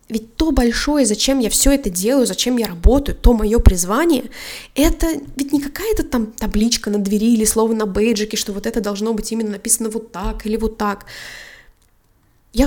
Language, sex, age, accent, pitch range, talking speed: Russian, female, 20-39, native, 205-260 Hz, 185 wpm